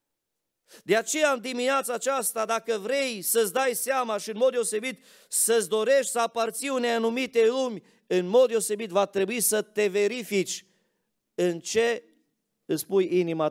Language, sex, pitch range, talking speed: Romanian, male, 200-260 Hz, 150 wpm